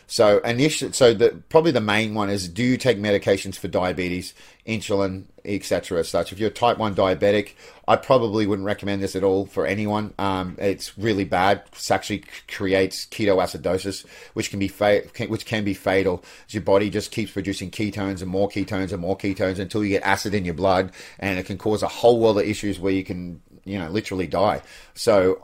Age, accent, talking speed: 30-49, Australian, 205 wpm